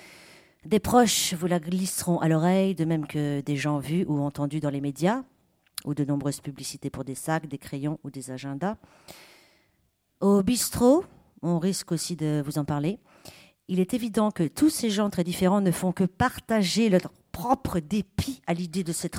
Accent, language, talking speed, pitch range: French, French, 185 wpm, 145-195 Hz